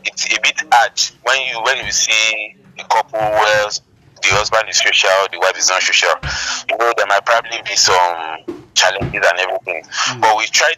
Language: English